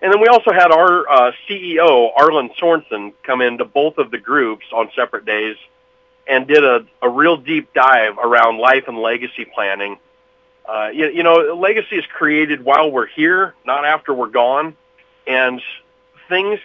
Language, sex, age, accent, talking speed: English, male, 40-59, American, 170 wpm